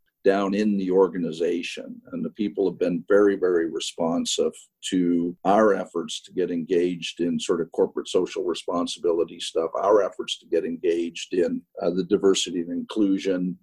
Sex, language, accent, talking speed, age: male, English, American, 160 wpm, 50-69